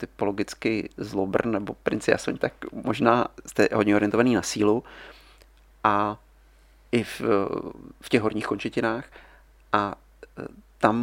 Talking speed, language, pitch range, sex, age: 115 wpm, Czech, 100-115 Hz, male, 30-49